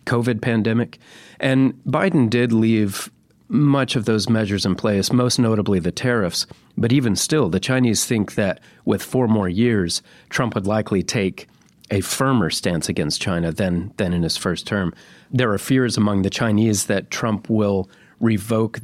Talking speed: 165 wpm